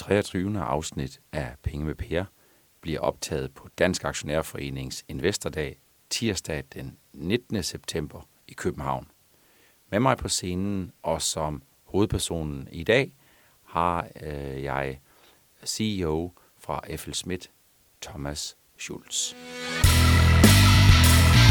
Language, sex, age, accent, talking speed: Danish, male, 60-79, native, 100 wpm